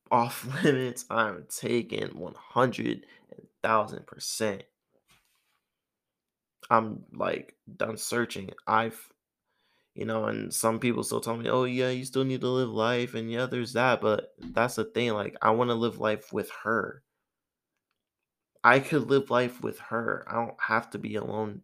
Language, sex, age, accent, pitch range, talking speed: English, male, 20-39, American, 110-125 Hz, 150 wpm